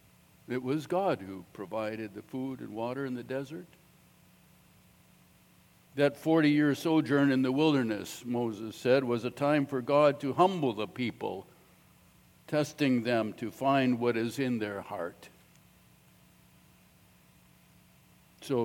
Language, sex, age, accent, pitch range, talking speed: English, male, 60-79, American, 115-145 Hz, 125 wpm